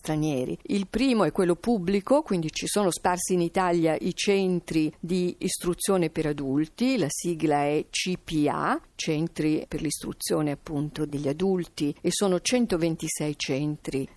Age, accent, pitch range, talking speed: 50-69, native, 155-195 Hz, 130 wpm